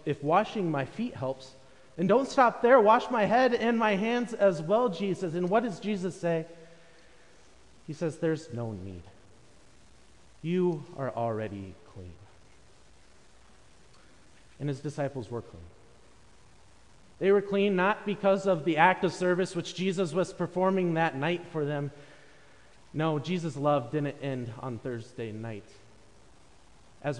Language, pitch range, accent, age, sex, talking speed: English, 115-175 Hz, American, 30-49, male, 140 wpm